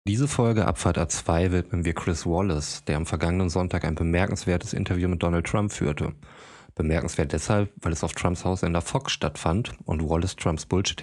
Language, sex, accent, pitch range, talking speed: German, male, German, 85-100 Hz, 185 wpm